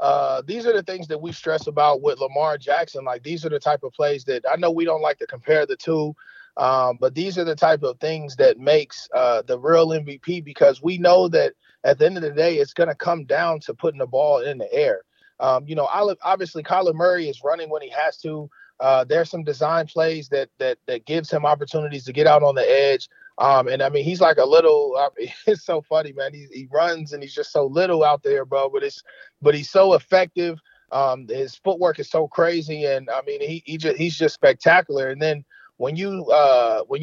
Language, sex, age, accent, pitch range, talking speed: English, male, 30-49, American, 145-190 Hz, 240 wpm